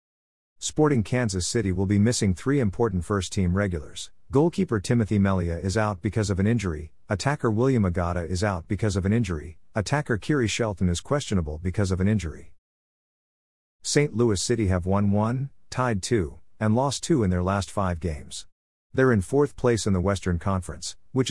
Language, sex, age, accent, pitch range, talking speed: English, male, 50-69, American, 90-115 Hz, 175 wpm